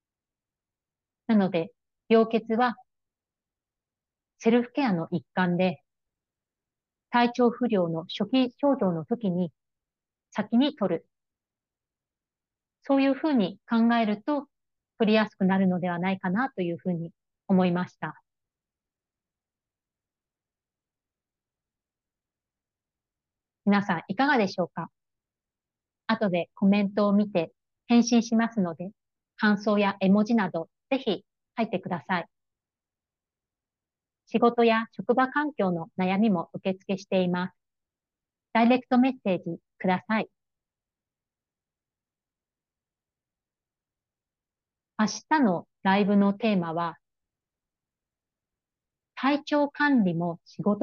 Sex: female